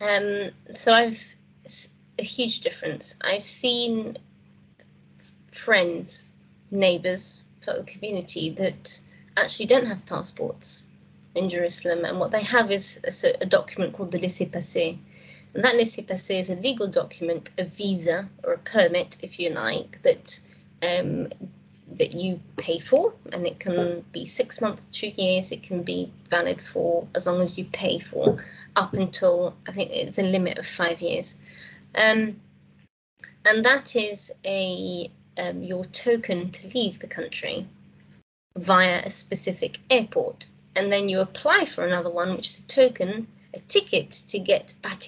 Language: English